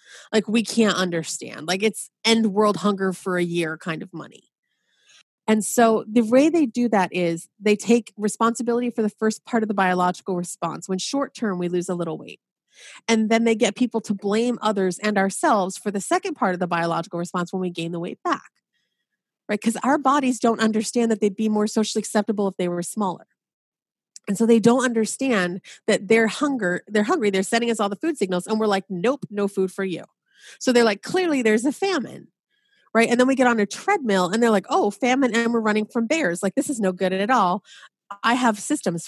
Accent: American